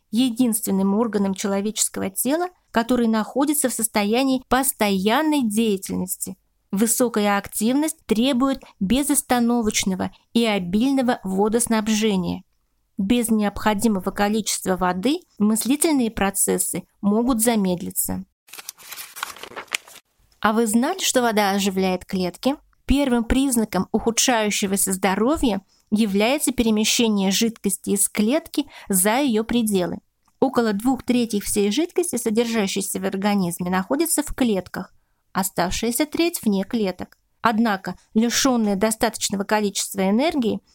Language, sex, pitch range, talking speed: Russian, female, 200-245 Hz, 95 wpm